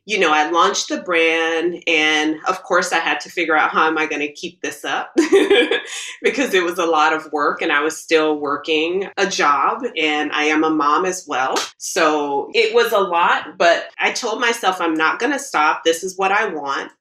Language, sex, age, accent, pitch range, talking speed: English, female, 30-49, American, 155-190 Hz, 220 wpm